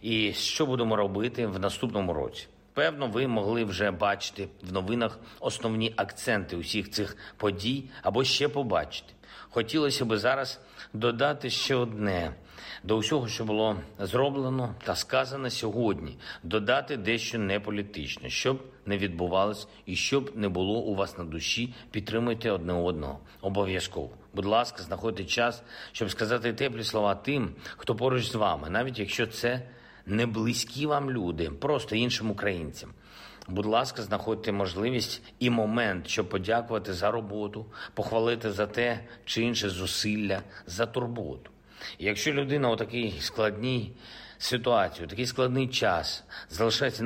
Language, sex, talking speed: Ukrainian, male, 135 wpm